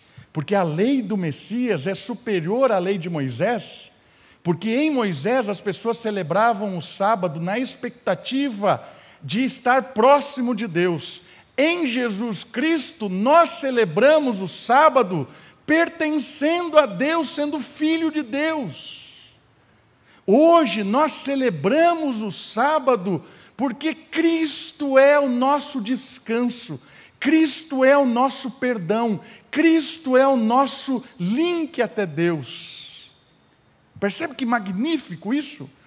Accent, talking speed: Brazilian, 110 wpm